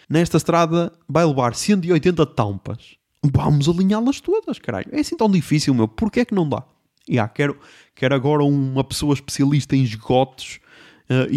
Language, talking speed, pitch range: Portuguese, 160 wpm, 125-155 Hz